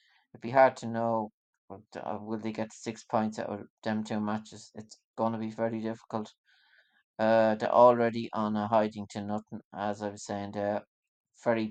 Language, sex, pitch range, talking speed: English, male, 100-115 Hz, 175 wpm